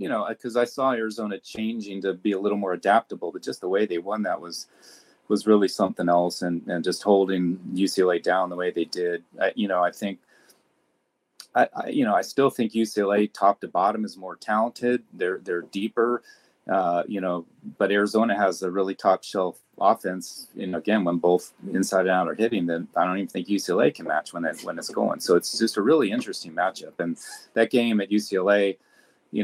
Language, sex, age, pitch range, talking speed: English, male, 30-49, 90-110 Hz, 210 wpm